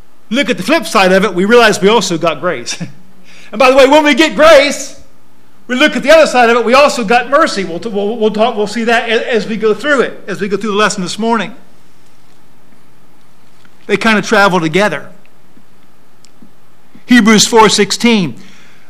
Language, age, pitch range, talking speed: English, 50-69, 180-245 Hz, 185 wpm